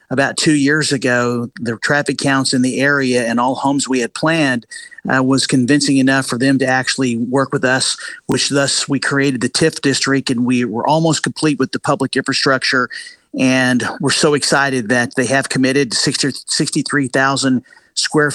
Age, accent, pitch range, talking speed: 50-69, American, 125-145 Hz, 175 wpm